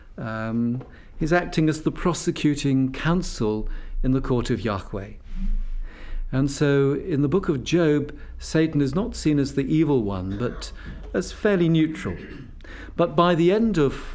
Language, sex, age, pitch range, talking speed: English, male, 50-69, 100-145 Hz, 155 wpm